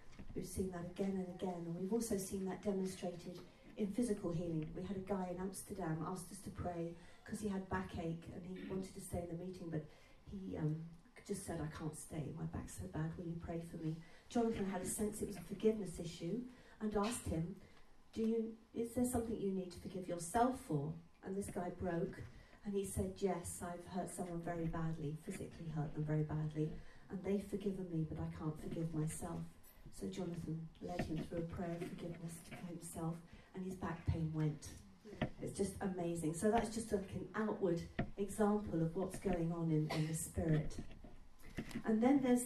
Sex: female